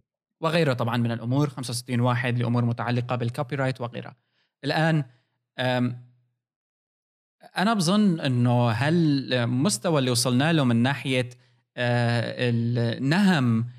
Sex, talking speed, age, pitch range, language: male, 95 wpm, 20-39, 120-135 Hz, Arabic